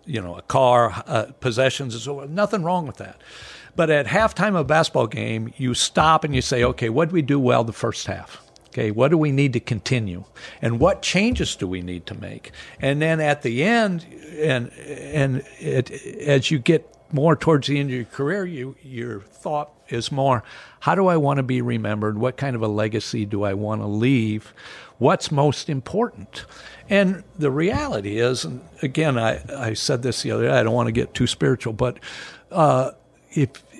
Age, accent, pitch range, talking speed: 60-79, American, 110-145 Hz, 200 wpm